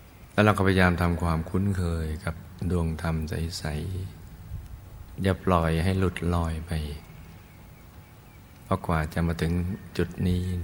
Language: Thai